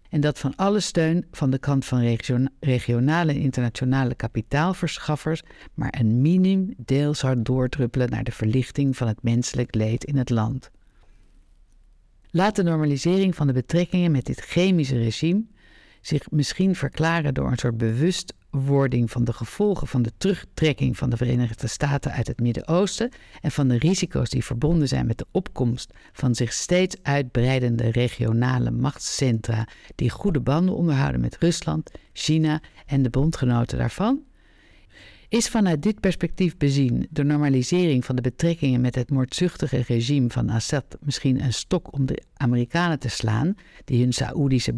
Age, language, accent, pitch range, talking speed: 60-79, Dutch, Dutch, 120-160 Hz, 150 wpm